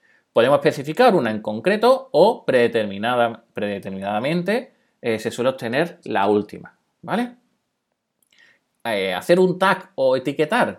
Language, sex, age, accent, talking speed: Spanish, male, 30-49, Spanish, 115 wpm